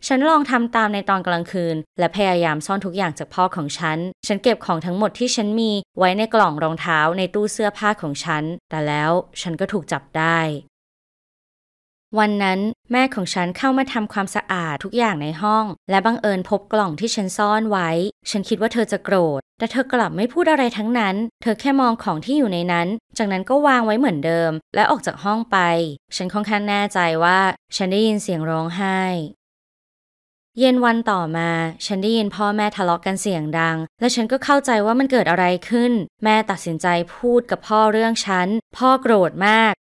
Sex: female